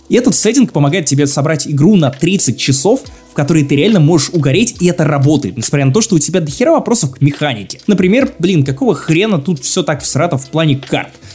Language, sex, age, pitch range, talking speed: Russian, male, 20-39, 145-195 Hz, 215 wpm